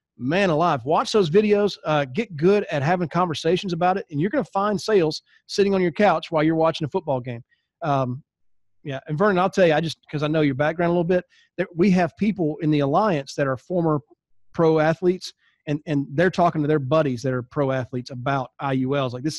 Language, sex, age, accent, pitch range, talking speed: English, male, 30-49, American, 145-195 Hz, 225 wpm